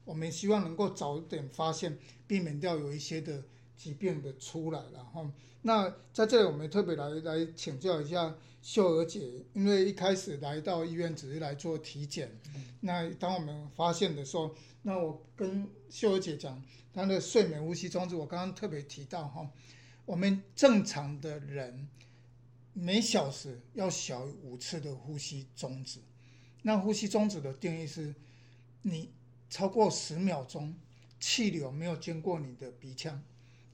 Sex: male